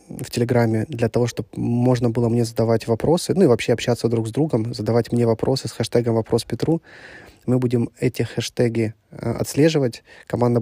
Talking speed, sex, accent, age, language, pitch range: 175 wpm, male, native, 20-39, Russian, 110-125 Hz